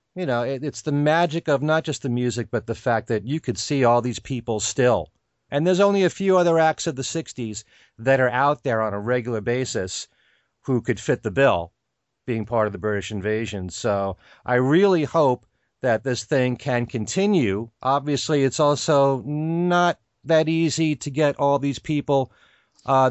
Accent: American